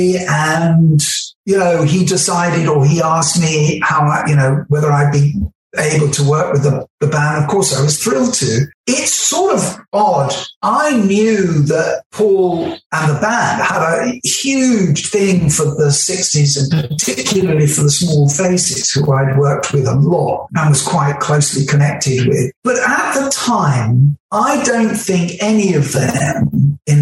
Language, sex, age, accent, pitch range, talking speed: English, male, 60-79, British, 150-215 Hz, 165 wpm